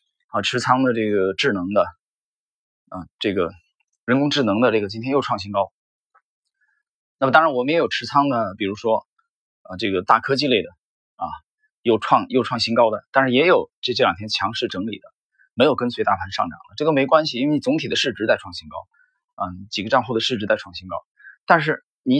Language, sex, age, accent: Chinese, male, 20-39, native